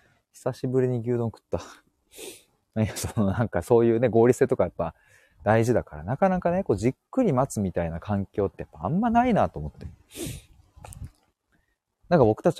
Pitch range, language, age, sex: 90-125 Hz, Japanese, 30-49, male